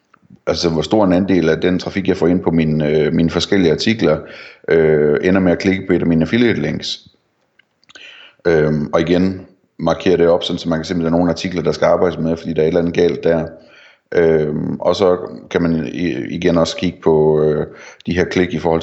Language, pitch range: Danish, 80-90 Hz